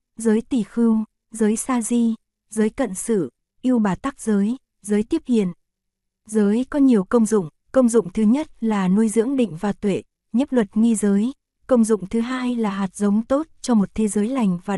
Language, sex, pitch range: Korean, female, 200-240 Hz